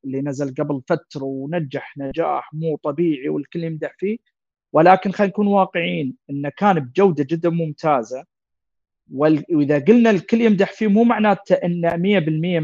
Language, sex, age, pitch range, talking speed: Arabic, male, 40-59, 150-200 Hz, 140 wpm